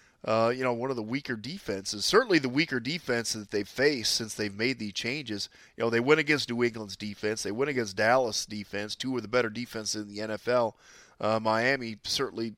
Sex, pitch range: male, 110-135 Hz